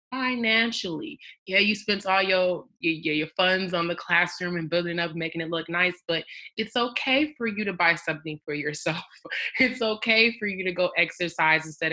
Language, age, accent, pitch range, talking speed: English, 20-39, American, 155-175 Hz, 185 wpm